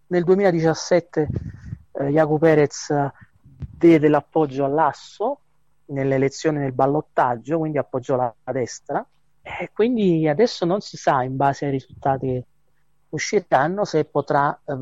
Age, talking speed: 40-59, 130 wpm